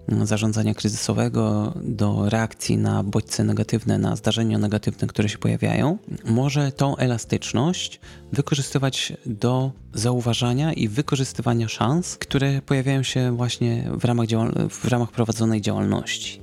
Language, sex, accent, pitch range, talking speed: Polish, male, native, 110-130 Hz, 120 wpm